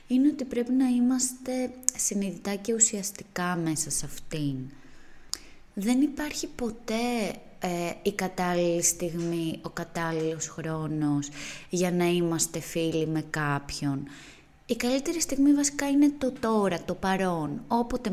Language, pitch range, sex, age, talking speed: Greek, 165-235 Hz, female, 20-39, 120 wpm